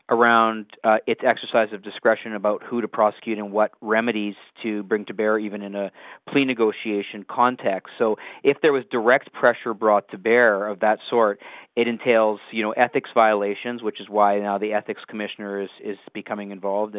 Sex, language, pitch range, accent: male, English, 105-120 Hz, American